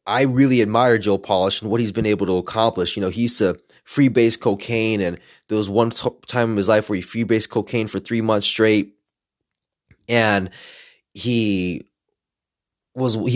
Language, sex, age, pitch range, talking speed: English, male, 20-39, 105-125 Hz, 190 wpm